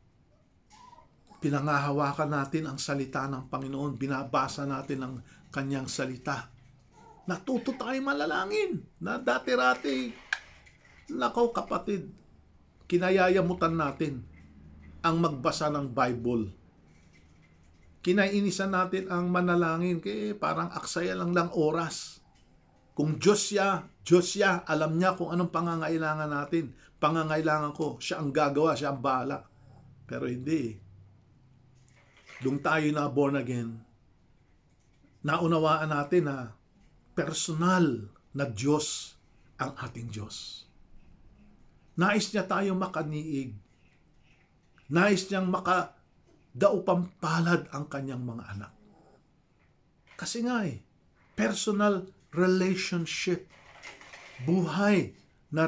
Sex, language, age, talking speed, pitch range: male, English, 50-69, 90 wpm, 125-180 Hz